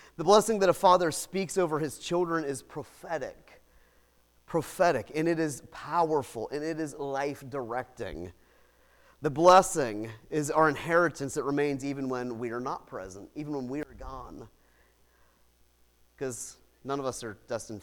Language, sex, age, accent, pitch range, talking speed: English, male, 30-49, American, 125-195 Hz, 150 wpm